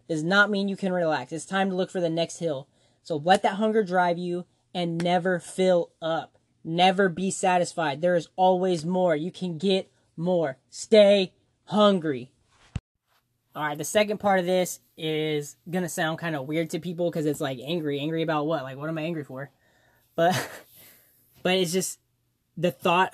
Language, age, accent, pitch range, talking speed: English, 10-29, American, 150-185 Hz, 185 wpm